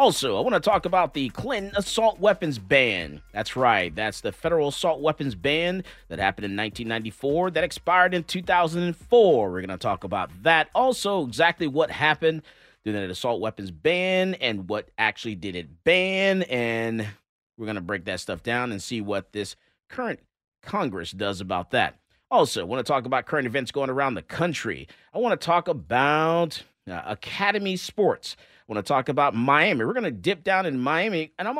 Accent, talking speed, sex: American, 190 wpm, male